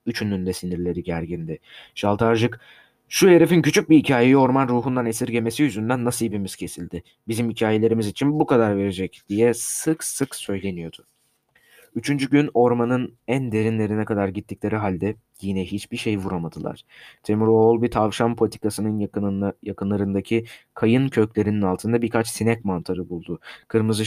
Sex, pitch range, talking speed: male, 100-115 Hz, 125 wpm